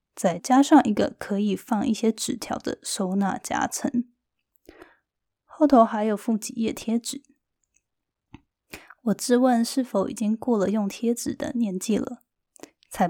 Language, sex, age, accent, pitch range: Chinese, female, 20-39, native, 205-265 Hz